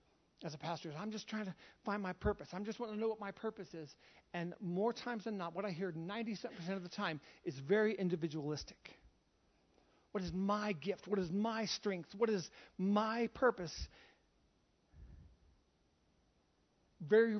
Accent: American